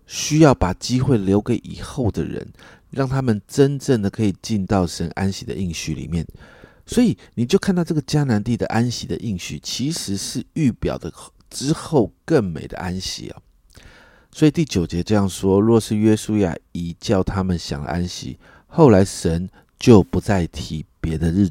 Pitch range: 90-115 Hz